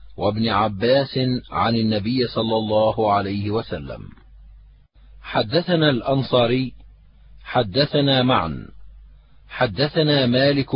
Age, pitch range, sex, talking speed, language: 50-69, 110-140 Hz, male, 80 wpm, Arabic